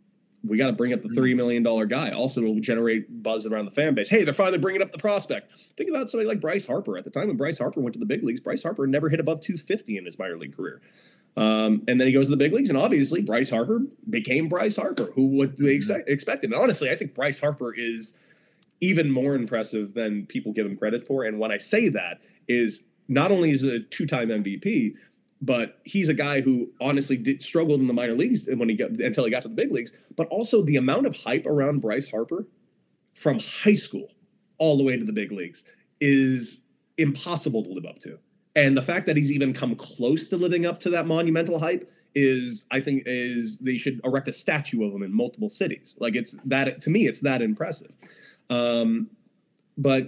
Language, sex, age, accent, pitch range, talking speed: English, male, 30-49, American, 120-185 Hz, 230 wpm